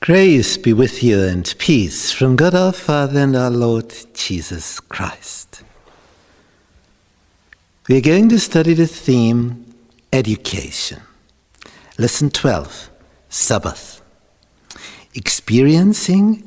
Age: 60-79